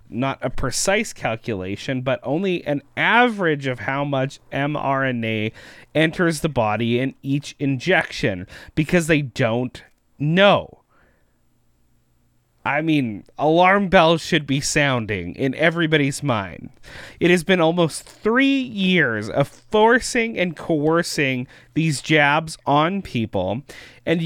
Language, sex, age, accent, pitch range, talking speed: English, male, 30-49, American, 130-180 Hz, 115 wpm